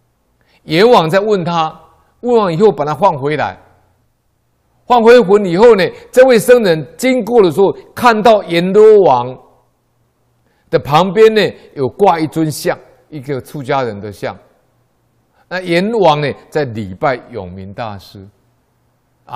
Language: Chinese